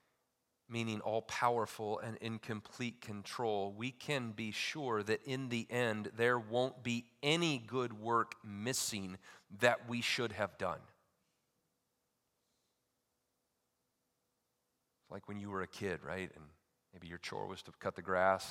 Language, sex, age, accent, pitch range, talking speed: English, male, 40-59, American, 100-150 Hz, 135 wpm